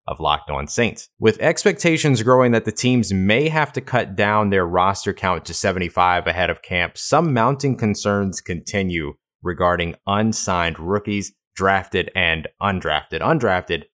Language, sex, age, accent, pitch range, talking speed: English, male, 20-39, American, 90-115 Hz, 145 wpm